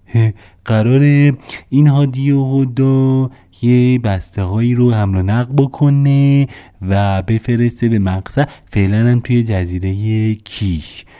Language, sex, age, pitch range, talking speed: Persian, male, 30-49, 100-135 Hz, 105 wpm